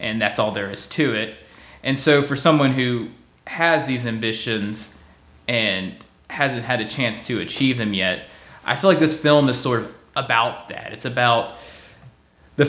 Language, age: English, 20-39